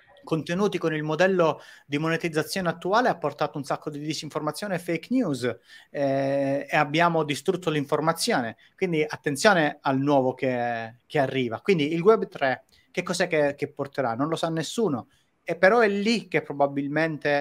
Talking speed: 160 wpm